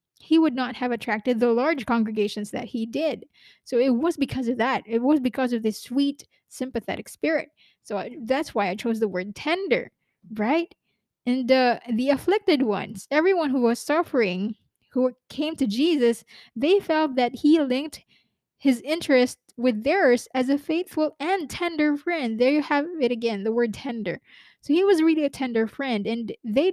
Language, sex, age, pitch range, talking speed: English, female, 20-39, 230-285 Hz, 175 wpm